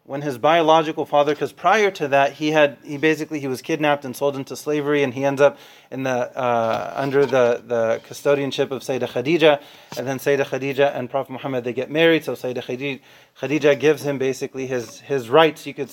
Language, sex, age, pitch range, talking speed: English, male, 30-49, 140-165 Hz, 205 wpm